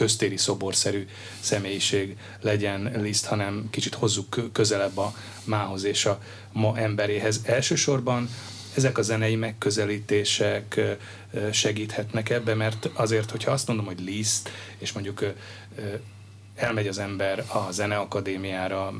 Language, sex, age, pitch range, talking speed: Hungarian, male, 30-49, 100-110 Hz, 115 wpm